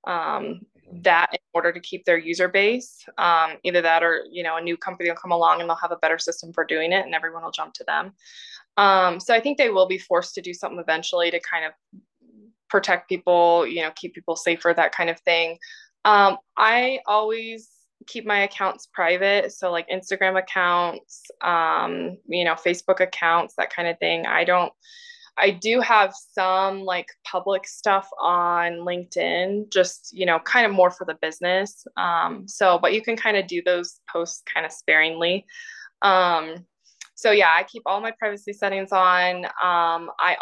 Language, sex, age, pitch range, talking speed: English, female, 20-39, 175-210 Hz, 190 wpm